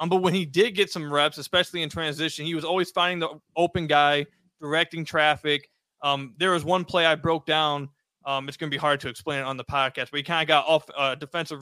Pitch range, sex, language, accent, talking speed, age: 145-175 Hz, male, English, American, 255 wpm, 20-39